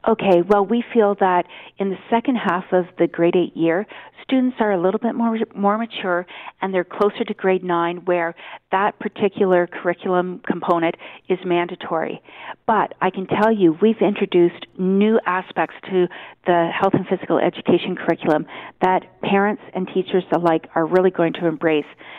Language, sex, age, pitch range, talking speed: English, female, 40-59, 180-220 Hz, 165 wpm